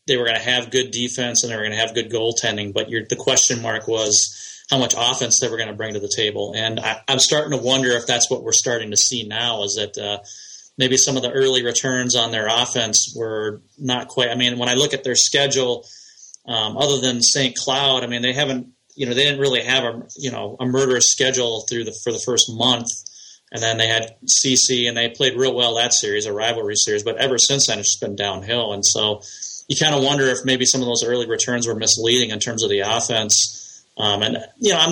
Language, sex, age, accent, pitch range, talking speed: English, male, 30-49, American, 110-130 Hz, 245 wpm